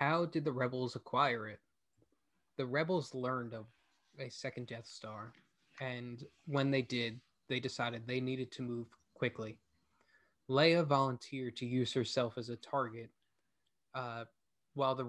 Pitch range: 120-140 Hz